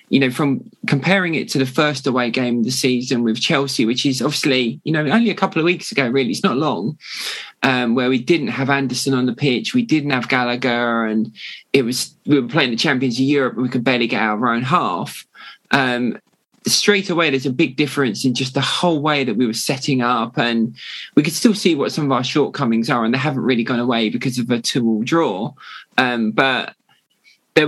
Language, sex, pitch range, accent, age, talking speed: English, male, 125-150 Hz, British, 20-39, 225 wpm